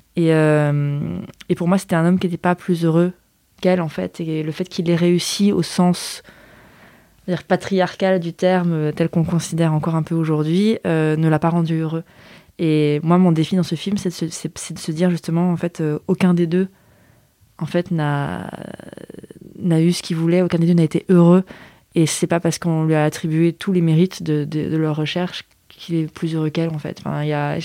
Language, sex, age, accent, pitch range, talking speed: French, female, 20-39, French, 160-185 Hz, 225 wpm